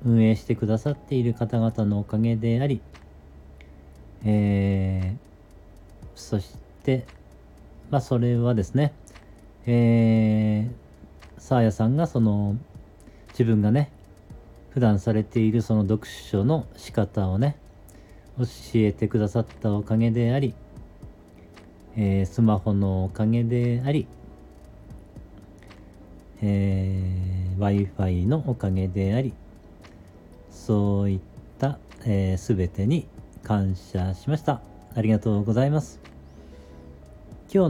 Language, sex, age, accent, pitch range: Japanese, male, 40-59, native, 95-120 Hz